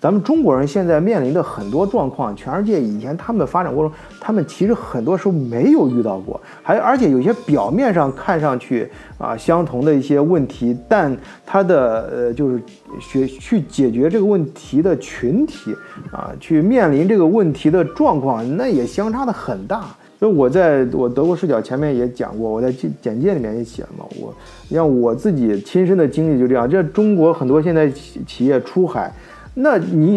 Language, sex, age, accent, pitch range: Chinese, male, 30-49, native, 125-190 Hz